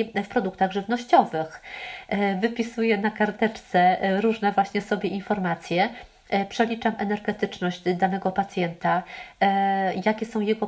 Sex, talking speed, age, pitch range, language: female, 95 wpm, 30-49, 190-215 Hz, Polish